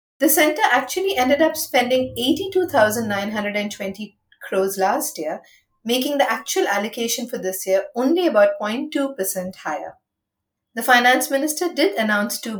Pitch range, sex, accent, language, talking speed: 195-270 Hz, female, Indian, English, 130 wpm